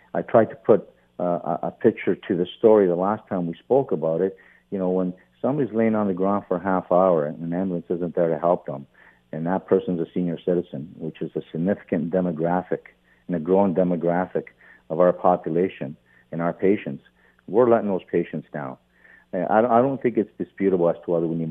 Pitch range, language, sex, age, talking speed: 80-95 Hz, English, male, 50-69, 205 wpm